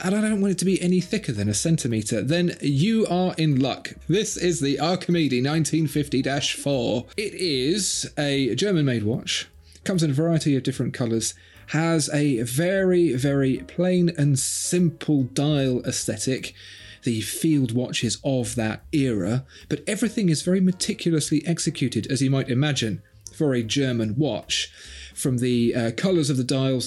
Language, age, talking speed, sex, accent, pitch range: English, 30-49, 155 wpm, male, British, 120-165 Hz